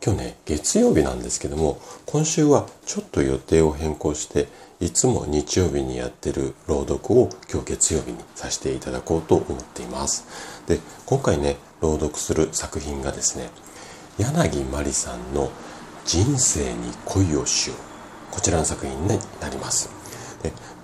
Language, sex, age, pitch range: Japanese, male, 40-59, 75-100 Hz